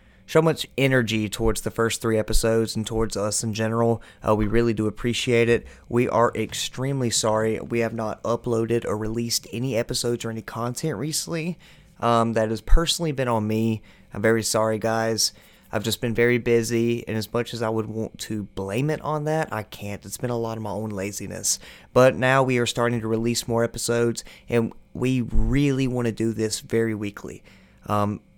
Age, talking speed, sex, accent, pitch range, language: 30-49, 195 wpm, male, American, 110-125 Hz, English